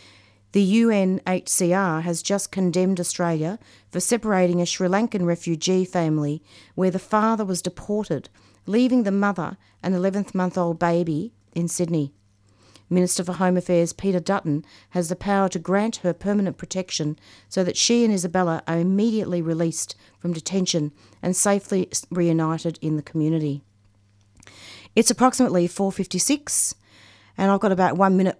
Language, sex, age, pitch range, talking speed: English, female, 40-59, 160-200 Hz, 140 wpm